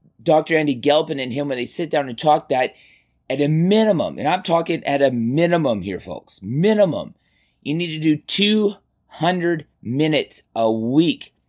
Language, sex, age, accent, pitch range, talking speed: English, male, 30-49, American, 120-155 Hz, 165 wpm